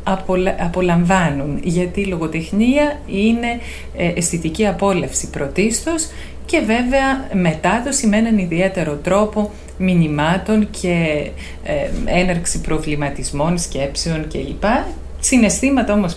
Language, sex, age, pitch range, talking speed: Greek, female, 30-49, 165-220 Hz, 85 wpm